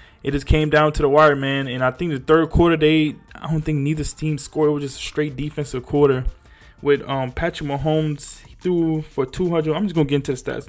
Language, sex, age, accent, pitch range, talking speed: English, male, 20-39, American, 130-160 Hz, 245 wpm